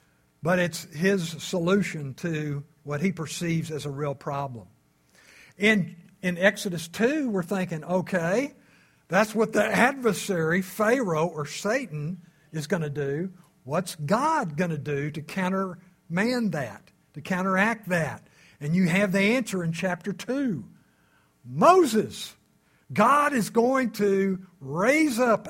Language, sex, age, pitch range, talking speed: English, male, 60-79, 155-200 Hz, 135 wpm